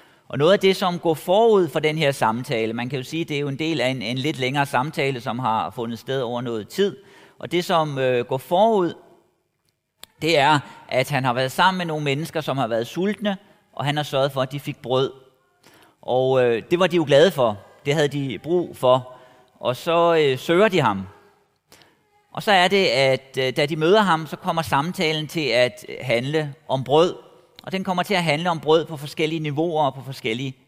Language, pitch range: Danish, 130-175 Hz